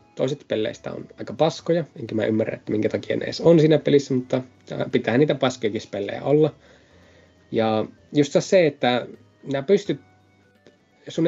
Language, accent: Finnish, native